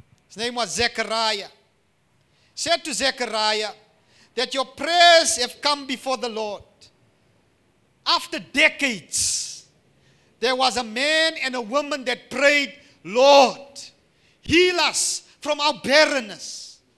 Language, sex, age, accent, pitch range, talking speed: English, male, 50-69, South African, 215-305 Hz, 110 wpm